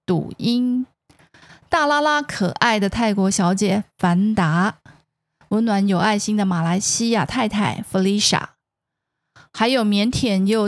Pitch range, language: 190-235 Hz, Chinese